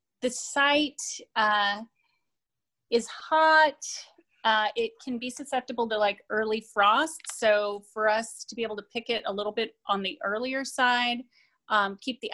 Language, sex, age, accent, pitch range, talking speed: English, female, 30-49, American, 210-250 Hz, 160 wpm